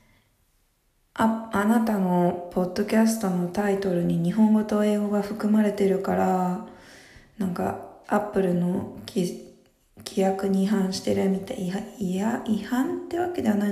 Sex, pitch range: female, 175-210 Hz